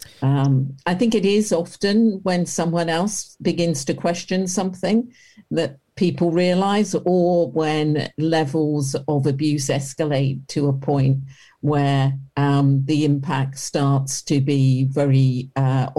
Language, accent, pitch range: English, British, 135-155 Hz